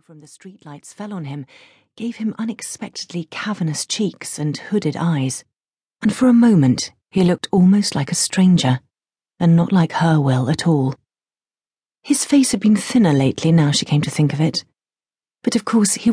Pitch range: 150-205 Hz